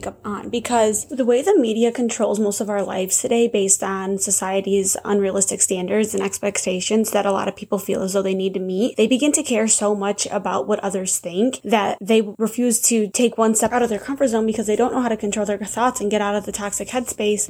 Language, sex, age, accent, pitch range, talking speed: English, female, 20-39, American, 200-235 Hz, 235 wpm